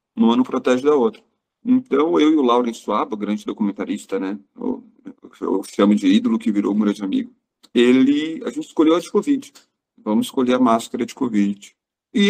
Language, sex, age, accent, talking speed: Portuguese, male, 40-59, Brazilian, 180 wpm